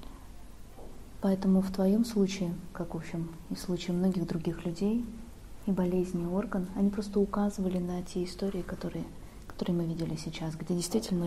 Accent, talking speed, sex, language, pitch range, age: native, 160 wpm, female, Russian, 170-195 Hz, 20-39